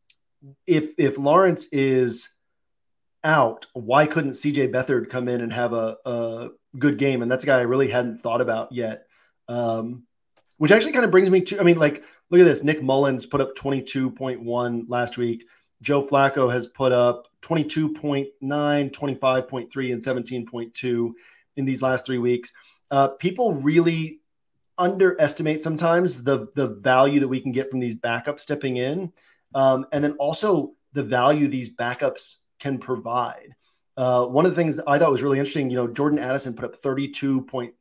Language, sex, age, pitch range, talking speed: English, male, 40-59, 125-150 Hz, 170 wpm